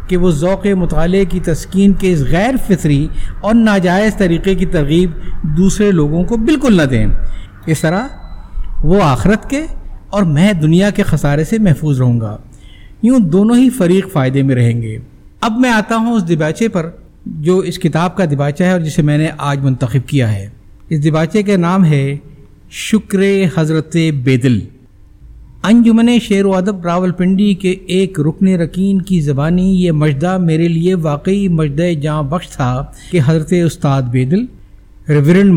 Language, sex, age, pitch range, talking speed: Urdu, male, 50-69, 150-195 Hz, 165 wpm